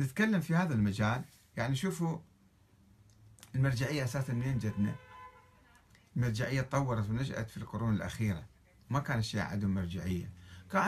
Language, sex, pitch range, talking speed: Arabic, male, 105-165 Hz, 120 wpm